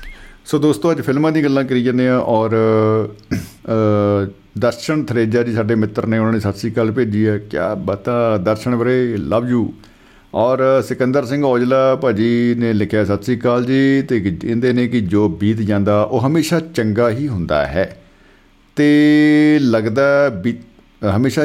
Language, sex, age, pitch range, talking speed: Punjabi, male, 50-69, 100-125 Hz, 160 wpm